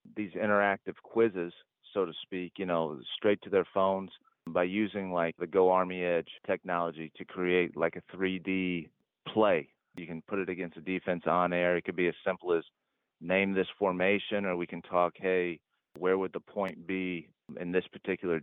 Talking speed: 185 wpm